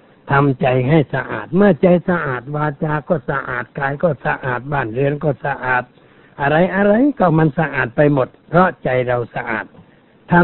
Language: Thai